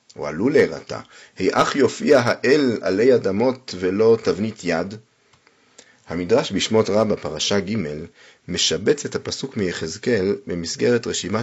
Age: 40-59